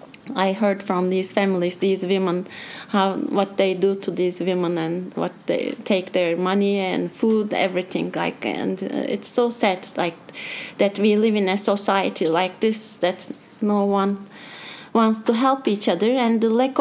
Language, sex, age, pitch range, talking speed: English, female, 30-49, 195-235 Hz, 170 wpm